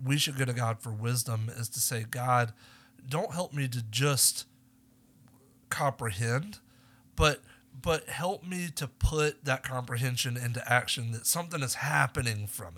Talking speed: 150 wpm